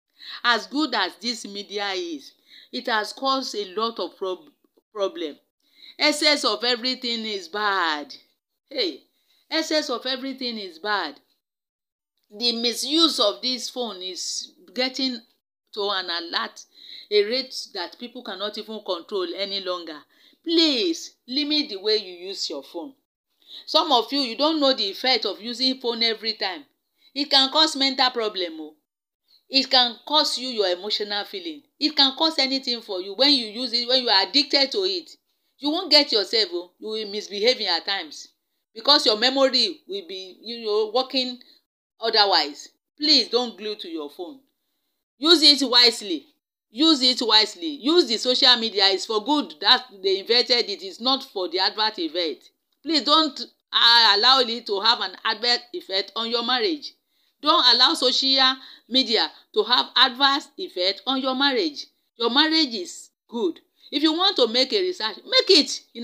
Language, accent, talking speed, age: English, Nigerian, 160 wpm, 40-59